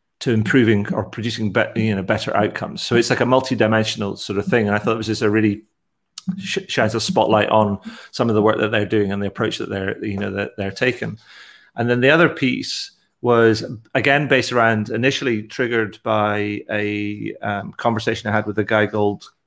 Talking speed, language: 210 wpm, English